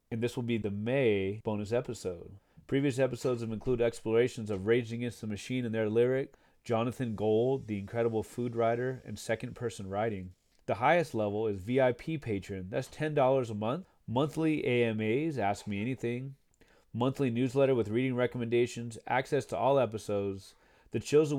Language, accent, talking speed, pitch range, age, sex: English, American, 165 wpm, 105-135 Hz, 30-49, male